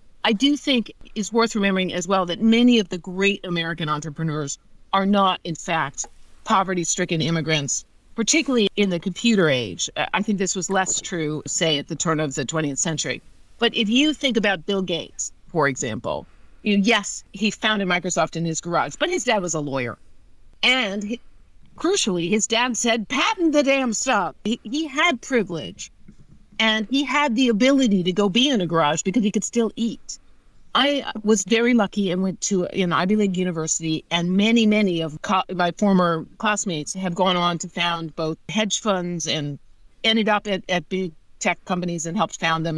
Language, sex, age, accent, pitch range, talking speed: English, female, 50-69, American, 170-225 Hz, 180 wpm